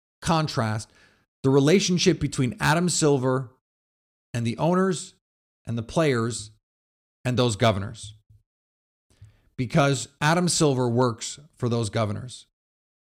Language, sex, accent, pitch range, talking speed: English, male, American, 105-140 Hz, 100 wpm